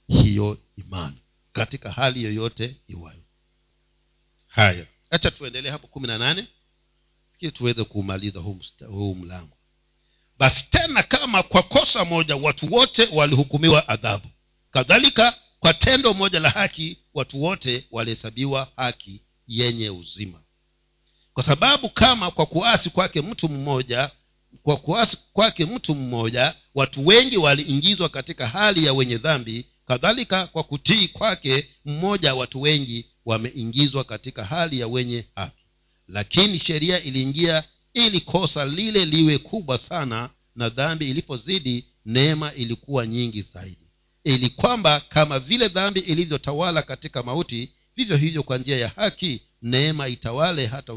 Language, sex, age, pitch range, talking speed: Swahili, male, 50-69, 115-160 Hz, 125 wpm